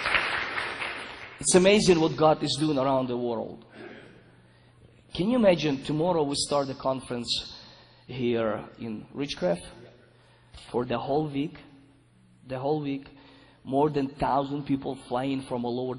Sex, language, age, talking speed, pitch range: male, English, 20-39, 130 wpm, 125-155 Hz